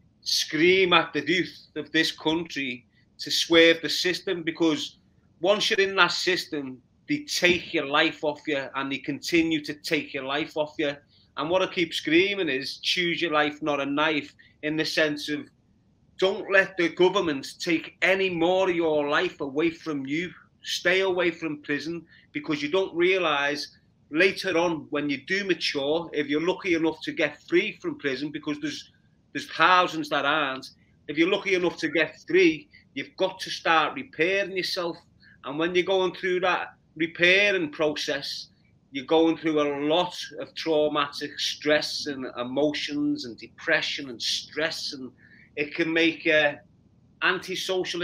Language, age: English, 30-49